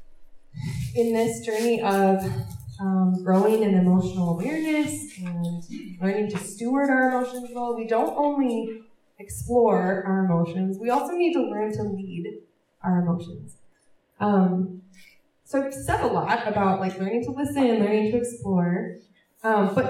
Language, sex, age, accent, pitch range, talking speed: English, female, 20-39, American, 185-240 Hz, 140 wpm